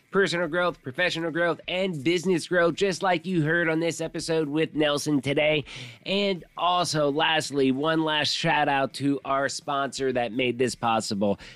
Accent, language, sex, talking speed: American, English, male, 160 wpm